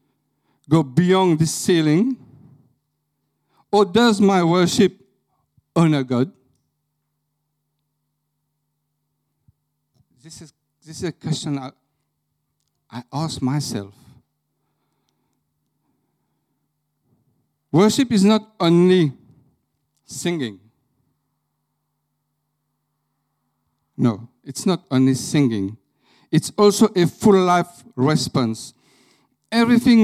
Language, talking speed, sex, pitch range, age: English, 75 wpm, male, 135-175 Hz, 60-79